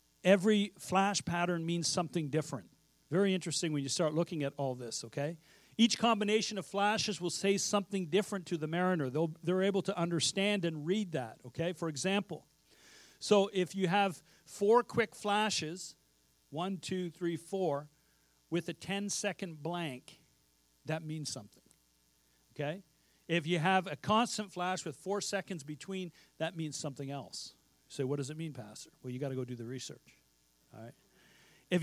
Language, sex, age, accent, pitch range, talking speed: English, male, 50-69, American, 155-200 Hz, 165 wpm